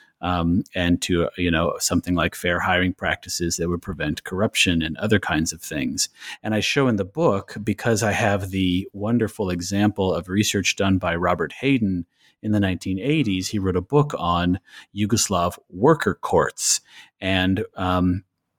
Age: 30-49